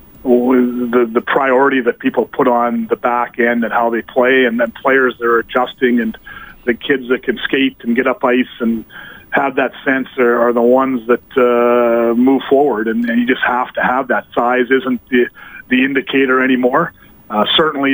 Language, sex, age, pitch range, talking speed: English, male, 40-59, 120-130 Hz, 195 wpm